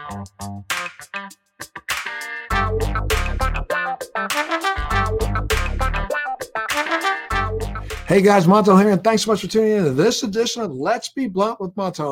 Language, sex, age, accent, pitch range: English, male, 50-69, American, 135-175 Hz